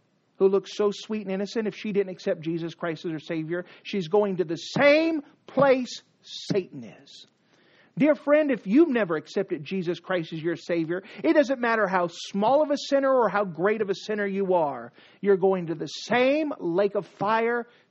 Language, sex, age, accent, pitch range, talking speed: English, male, 50-69, American, 170-215 Hz, 195 wpm